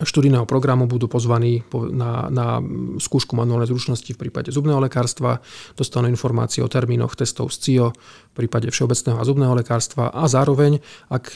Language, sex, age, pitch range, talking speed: Slovak, male, 40-59, 120-135 Hz, 155 wpm